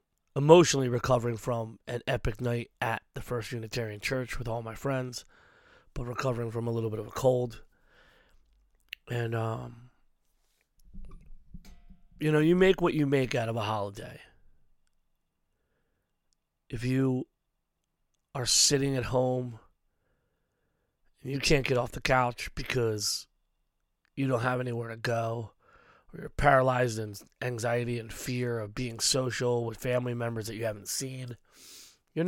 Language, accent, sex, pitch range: English, American, male, 115-130 Hz